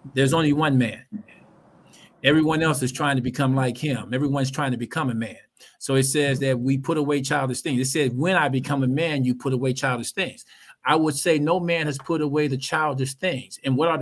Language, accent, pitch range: English, American, 135-170 Hz